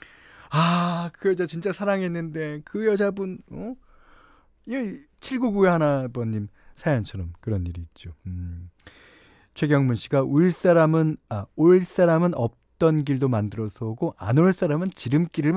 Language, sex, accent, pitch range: Korean, male, native, 110-175 Hz